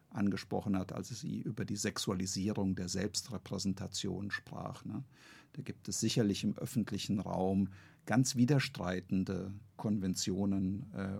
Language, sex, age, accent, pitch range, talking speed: German, male, 50-69, German, 100-120 Hz, 105 wpm